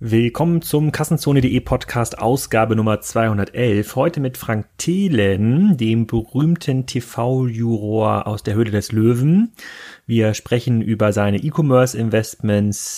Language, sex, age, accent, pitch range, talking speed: German, male, 30-49, German, 105-130 Hz, 110 wpm